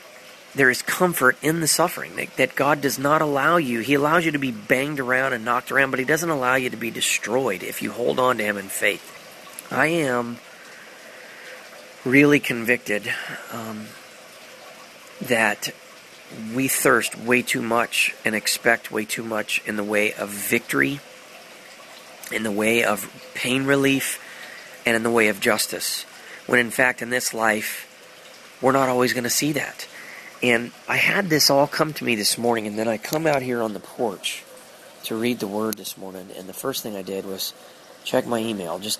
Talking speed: 185 wpm